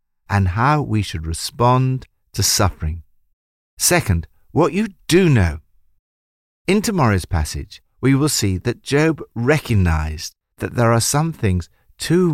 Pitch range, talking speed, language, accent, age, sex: 85-130 Hz, 130 wpm, English, British, 50-69, male